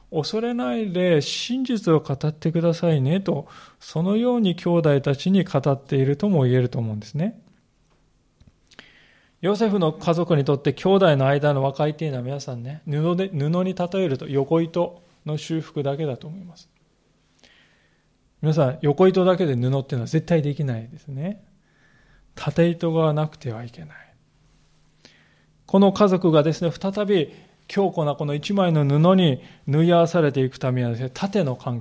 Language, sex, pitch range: Japanese, male, 140-185 Hz